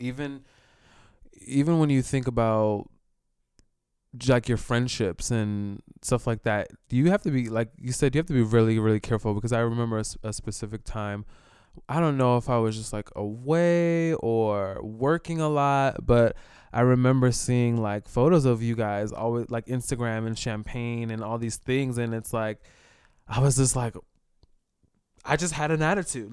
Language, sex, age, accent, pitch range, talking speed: English, male, 20-39, American, 115-140 Hz, 180 wpm